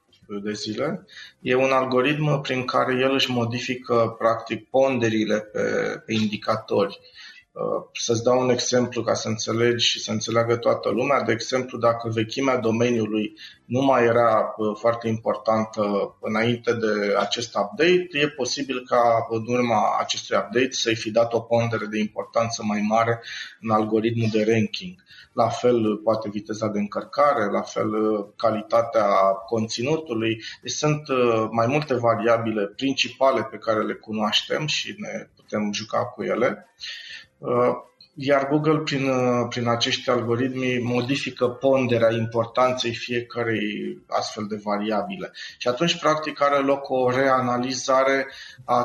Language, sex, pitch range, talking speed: Romanian, male, 110-130 Hz, 130 wpm